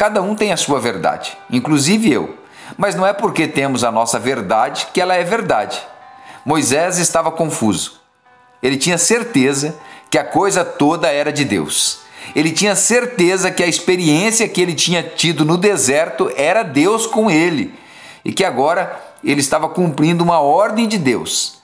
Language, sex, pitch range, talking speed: Portuguese, male, 145-205 Hz, 165 wpm